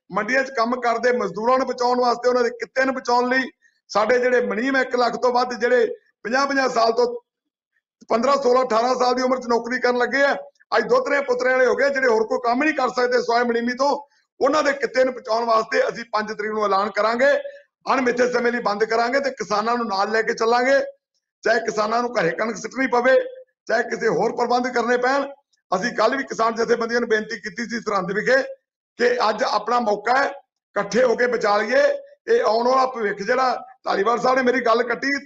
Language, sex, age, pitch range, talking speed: Punjabi, male, 50-69, 230-270 Hz, 110 wpm